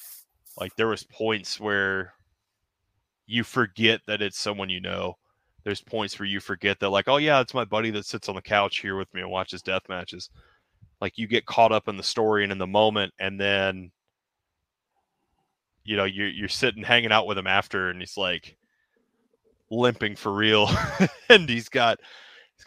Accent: American